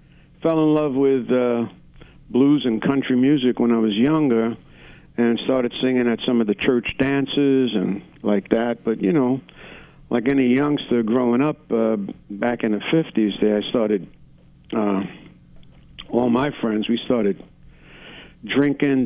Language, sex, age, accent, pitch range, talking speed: English, male, 50-69, American, 115-160 Hz, 150 wpm